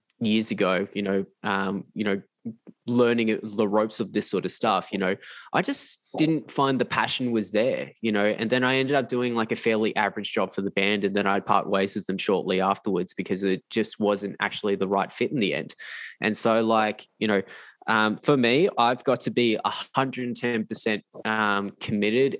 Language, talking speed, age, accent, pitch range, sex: English, 205 wpm, 10-29, Australian, 100-125 Hz, male